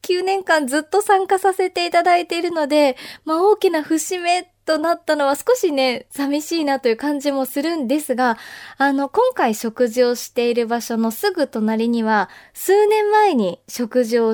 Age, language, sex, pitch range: 20-39, Japanese, female, 235-315 Hz